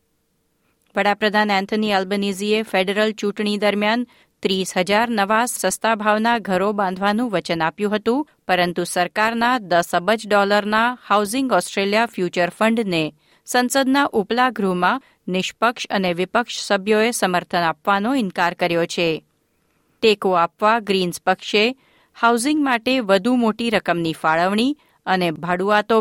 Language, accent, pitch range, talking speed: Gujarati, native, 185-240 Hz, 115 wpm